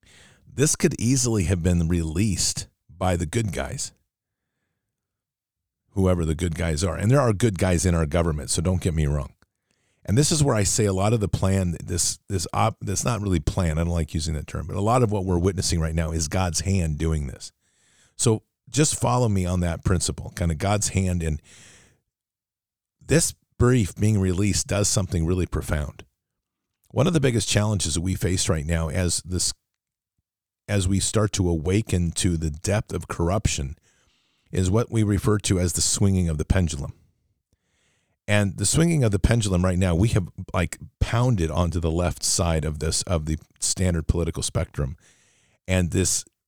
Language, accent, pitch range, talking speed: English, American, 85-105 Hz, 185 wpm